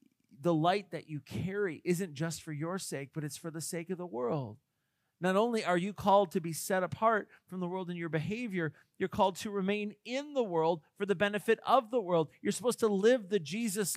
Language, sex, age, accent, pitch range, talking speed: English, male, 40-59, American, 160-205 Hz, 225 wpm